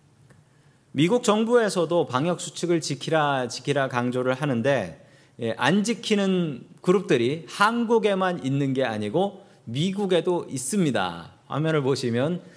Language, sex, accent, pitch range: Korean, male, native, 125-165 Hz